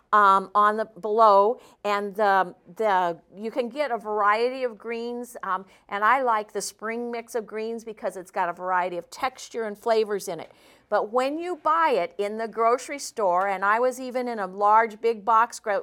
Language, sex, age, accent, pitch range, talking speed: English, female, 50-69, American, 200-240 Hz, 200 wpm